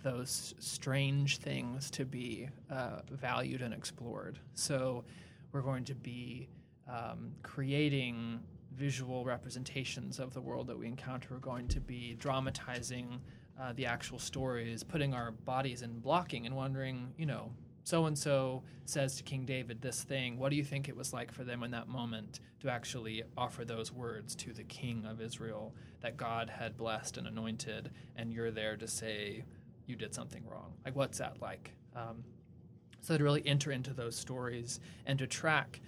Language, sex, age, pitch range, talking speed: English, male, 20-39, 115-135 Hz, 170 wpm